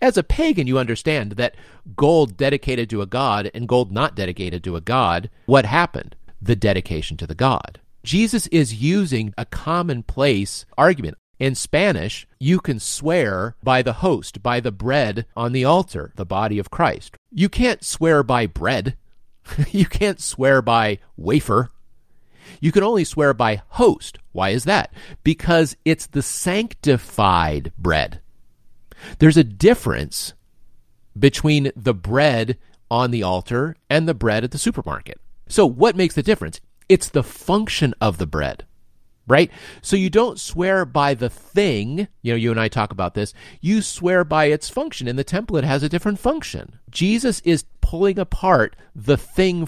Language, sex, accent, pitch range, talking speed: English, male, American, 110-165 Hz, 160 wpm